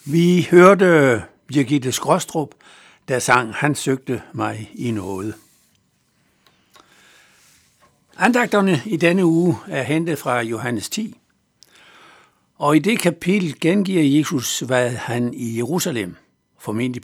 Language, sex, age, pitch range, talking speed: Danish, male, 60-79, 125-170 Hz, 110 wpm